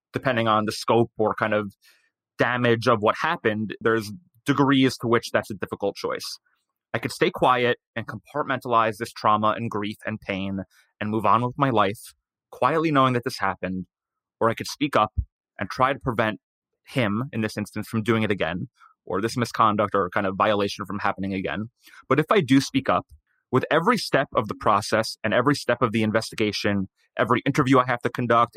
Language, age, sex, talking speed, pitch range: English, 30-49, male, 195 wpm, 105-130 Hz